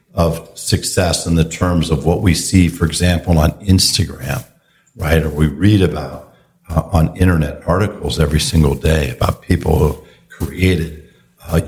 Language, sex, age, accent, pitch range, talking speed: English, male, 60-79, American, 80-120 Hz, 155 wpm